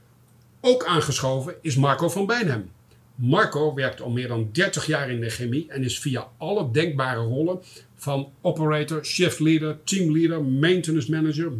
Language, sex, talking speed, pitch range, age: Dutch, male, 150 wpm, 130-170 Hz, 50-69